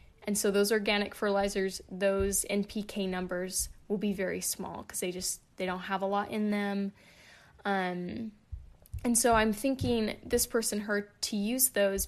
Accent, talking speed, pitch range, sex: American, 165 wpm, 195-235 Hz, female